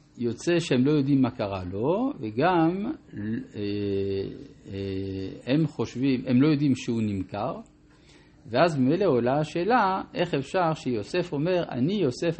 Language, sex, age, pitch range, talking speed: Hebrew, male, 50-69, 120-160 Hz, 120 wpm